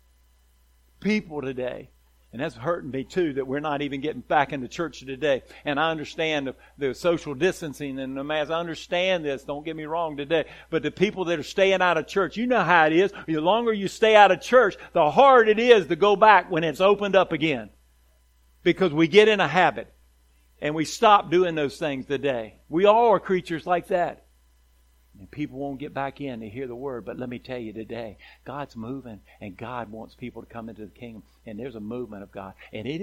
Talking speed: 220 wpm